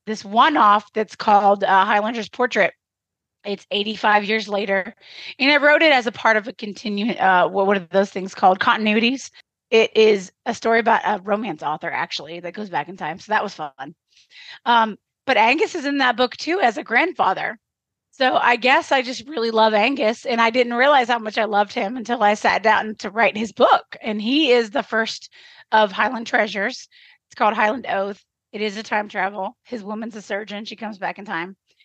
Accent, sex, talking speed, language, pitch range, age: American, female, 200 wpm, English, 195-240 Hz, 30-49